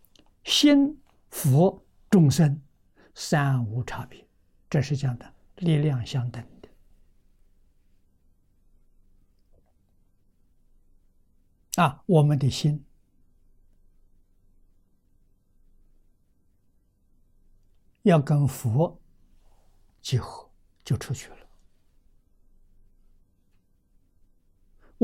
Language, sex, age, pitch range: Chinese, male, 60-79, 95-140 Hz